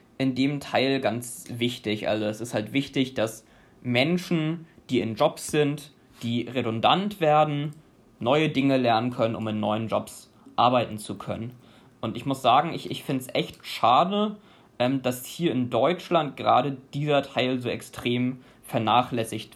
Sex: male